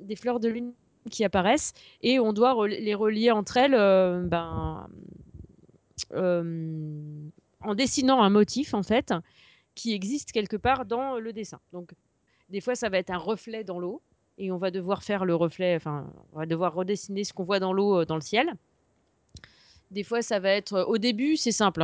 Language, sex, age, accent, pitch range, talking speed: French, female, 30-49, French, 185-230 Hz, 185 wpm